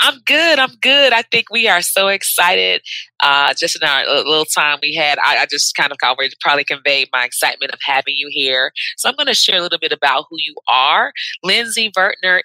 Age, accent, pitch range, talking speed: 20-39, American, 145-225 Hz, 220 wpm